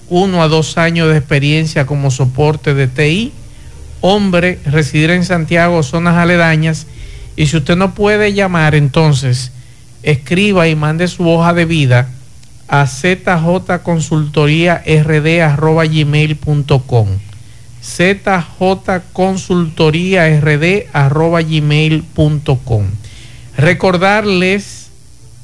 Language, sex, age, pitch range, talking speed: Spanish, male, 50-69, 135-170 Hz, 80 wpm